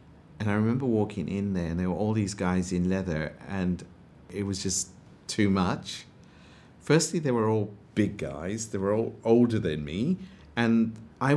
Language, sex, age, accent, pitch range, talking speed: English, male, 50-69, British, 95-130 Hz, 180 wpm